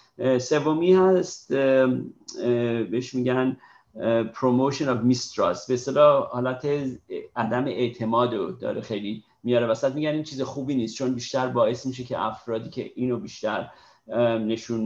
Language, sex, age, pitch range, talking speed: Persian, male, 50-69, 115-130 Hz, 125 wpm